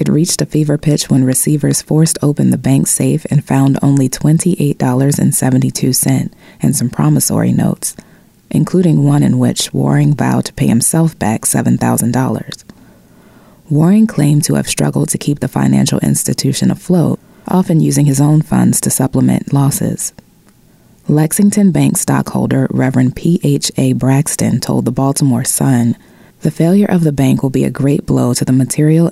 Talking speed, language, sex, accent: 150 wpm, English, female, American